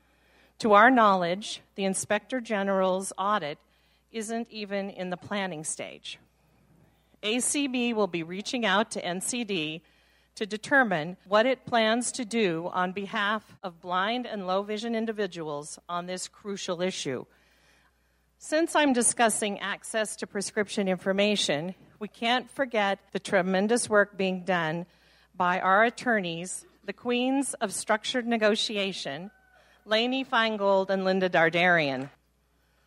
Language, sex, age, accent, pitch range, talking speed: English, female, 40-59, American, 180-225 Hz, 120 wpm